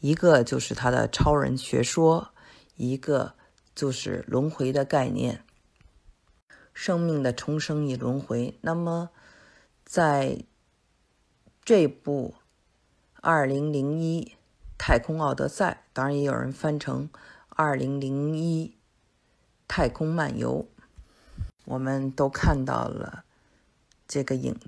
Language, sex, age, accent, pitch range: Chinese, female, 50-69, native, 130-160 Hz